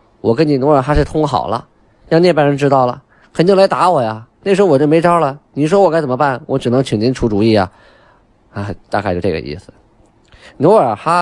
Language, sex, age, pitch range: Chinese, male, 20-39, 105-150 Hz